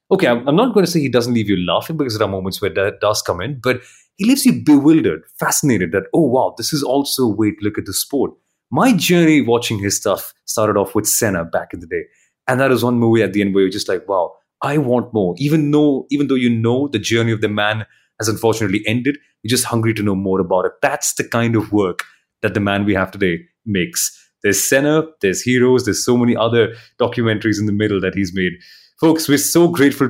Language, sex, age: English, male, 30-49